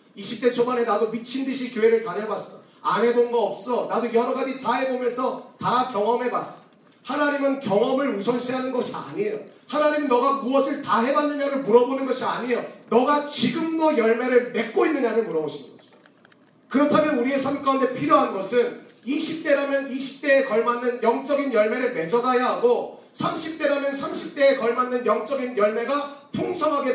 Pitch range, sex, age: 230-285 Hz, male, 40-59